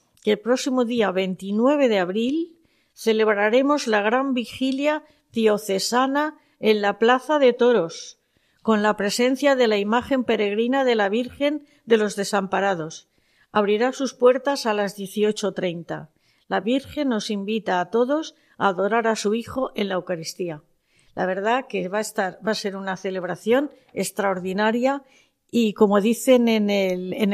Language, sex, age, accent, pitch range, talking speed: Spanish, female, 40-59, Spanish, 200-255 Hz, 150 wpm